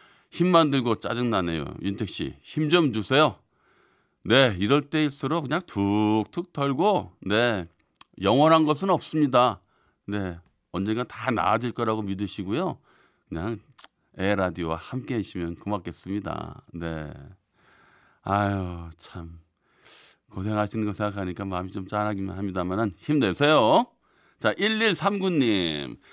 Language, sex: Korean, male